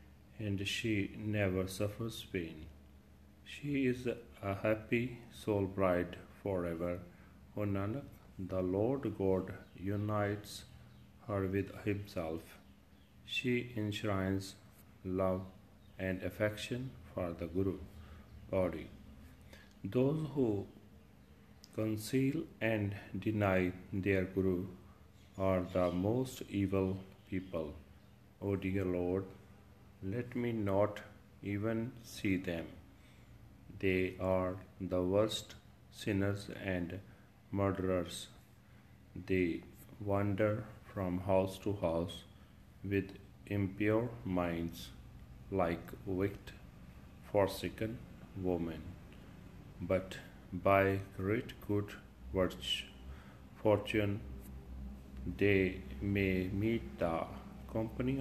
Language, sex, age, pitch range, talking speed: Punjabi, male, 40-59, 90-105 Hz, 85 wpm